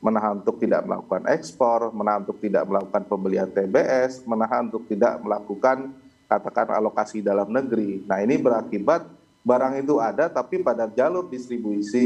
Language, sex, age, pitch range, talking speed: Indonesian, male, 30-49, 105-135 Hz, 145 wpm